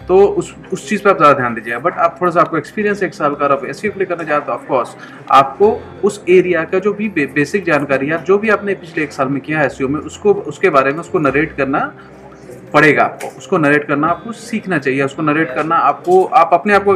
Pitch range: 140-180 Hz